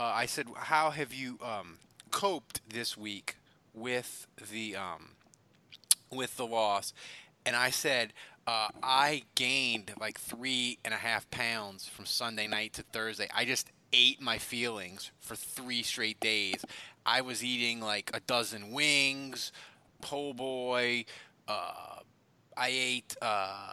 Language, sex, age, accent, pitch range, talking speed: English, male, 30-49, American, 115-145 Hz, 140 wpm